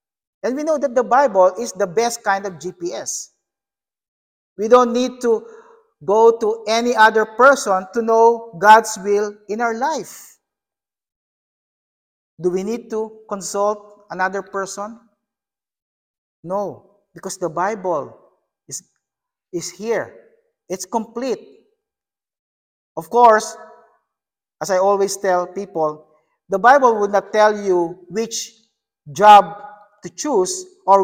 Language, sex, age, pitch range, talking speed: English, male, 50-69, 180-230 Hz, 120 wpm